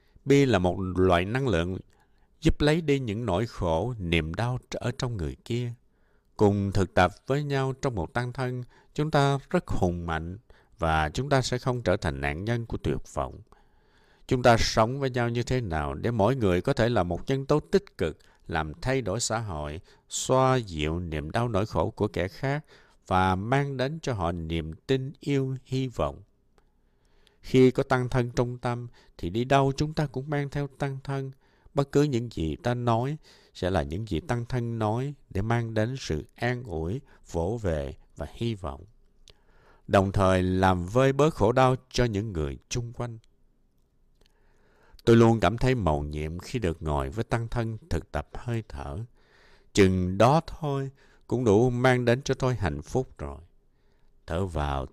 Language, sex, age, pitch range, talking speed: Vietnamese, male, 60-79, 85-130 Hz, 185 wpm